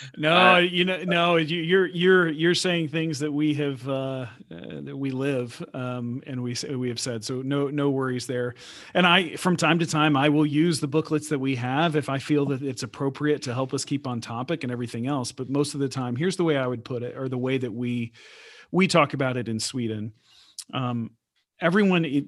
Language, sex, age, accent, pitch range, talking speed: English, male, 40-59, American, 125-155 Hz, 220 wpm